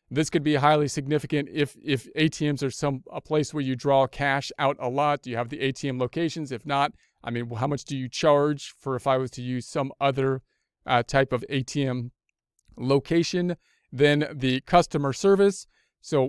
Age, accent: 40-59, American